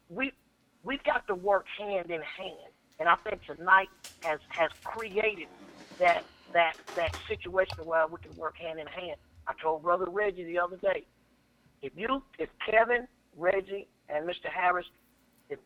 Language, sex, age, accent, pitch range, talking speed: English, female, 50-69, American, 175-220 Hz, 160 wpm